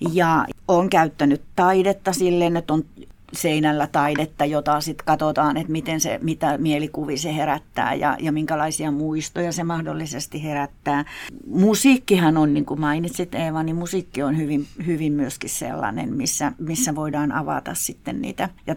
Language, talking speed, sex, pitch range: Finnish, 145 wpm, female, 150-175 Hz